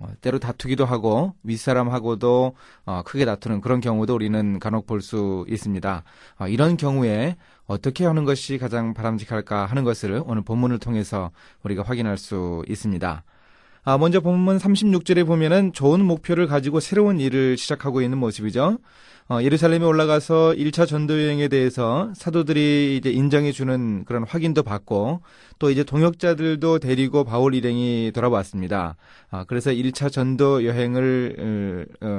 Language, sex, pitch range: Korean, male, 110-155 Hz